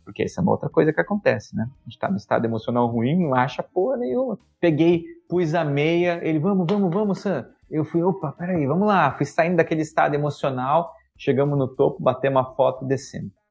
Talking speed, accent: 215 wpm, Brazilian